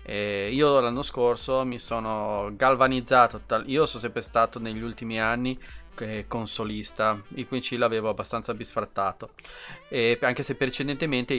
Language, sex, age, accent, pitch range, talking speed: Italian, male, 30-49, native, 115-145 Hz, 125 wpm